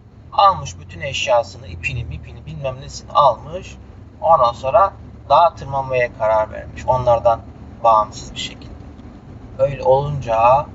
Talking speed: 110 wpm